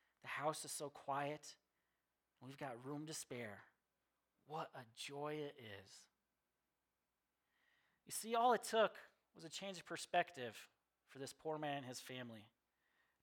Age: 40-59